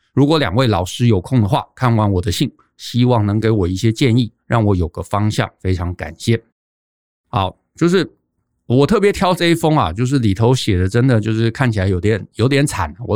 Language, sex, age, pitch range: Chinese, male, 50-69, 105-150 Hz